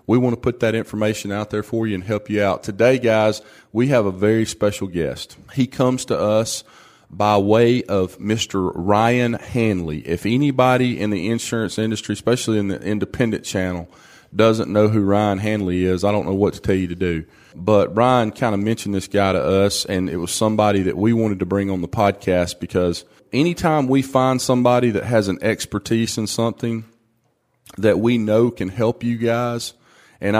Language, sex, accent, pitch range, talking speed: English, male, American, 100-125 Hz, 195 wpm